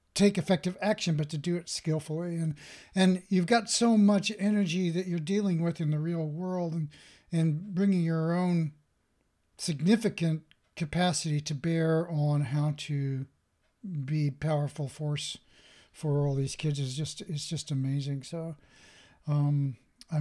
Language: English